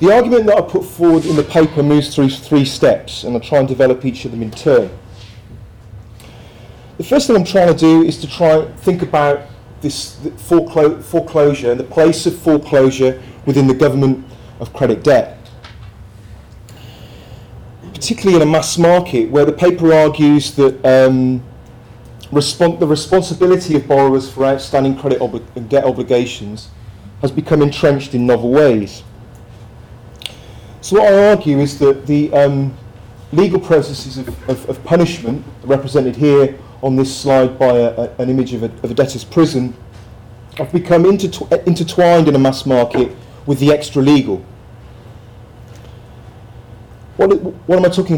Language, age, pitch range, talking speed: English, 30-49, 120-155 Hz, 150 wpm